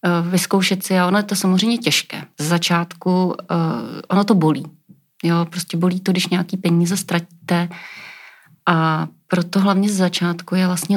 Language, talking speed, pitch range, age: Czech, 160 wpm, 170-195 Hz, 30-49